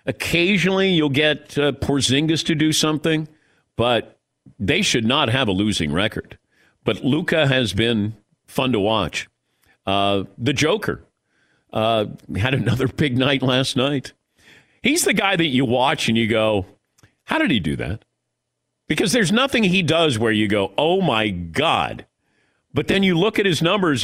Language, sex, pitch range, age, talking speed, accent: English, male, 110-165 Hz, 50-69, 160 wpm, American